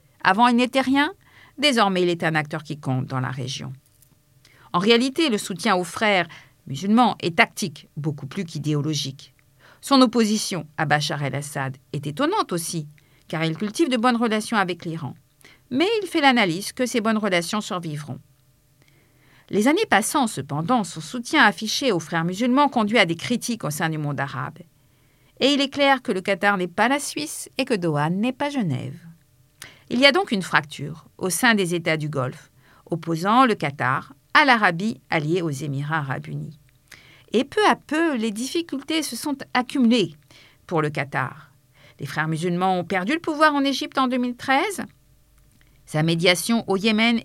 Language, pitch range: French, 145-235 Hz